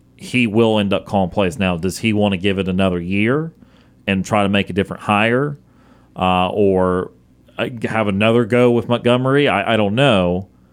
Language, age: English, 30-49